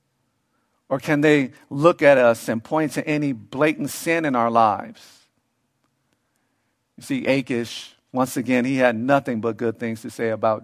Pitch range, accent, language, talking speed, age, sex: 125-160 Hz, American, English, 165 wpm, 50-69, male